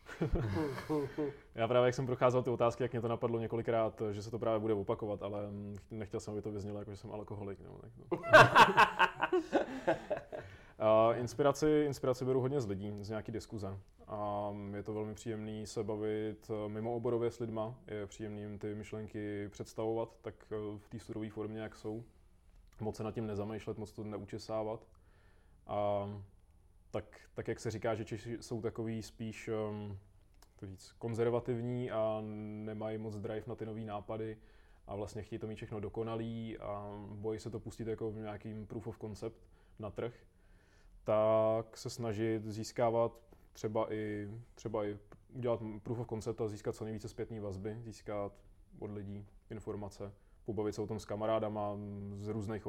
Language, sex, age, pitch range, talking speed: Czech, male, 20-39, 105-115 Hz, 165 wpm